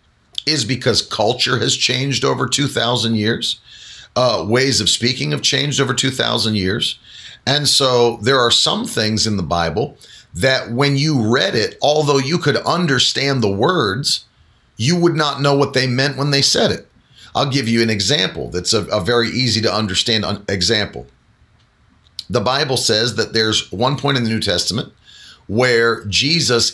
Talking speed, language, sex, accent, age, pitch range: 165 wpm, English, male, American, 40-59, 115-140 Hz